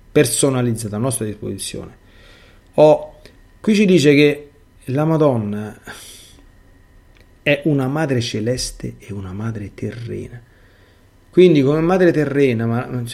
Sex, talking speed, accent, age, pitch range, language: male, 115 wpm, native, 30-49, 100-125 Hz, Italian